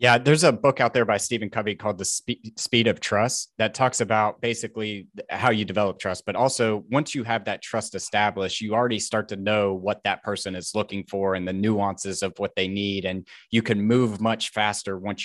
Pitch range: 100-120 Hz